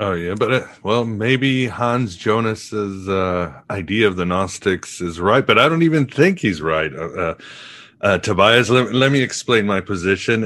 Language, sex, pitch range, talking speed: English, male, 90-115 Hz, 185 wpm